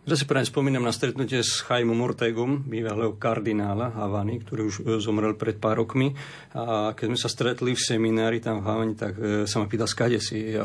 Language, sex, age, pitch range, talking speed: Slovak, male, 50-69, 110-125 Hz, 195 wpm